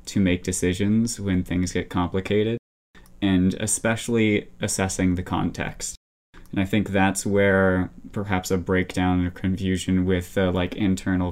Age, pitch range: 20-39, 90-100 Hz